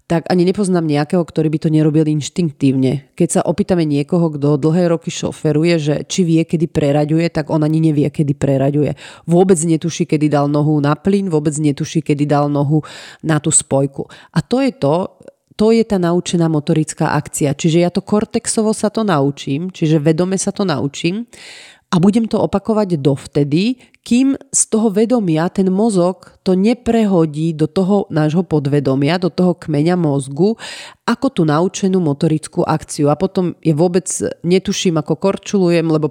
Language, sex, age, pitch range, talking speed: Slovak, female, 30-49, 155-185 Hz, 165 wpm